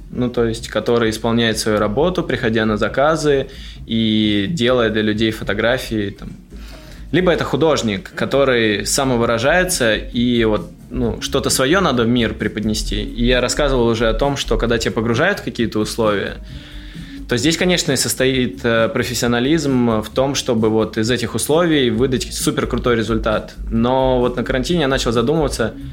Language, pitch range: Russian, 110-130 Hz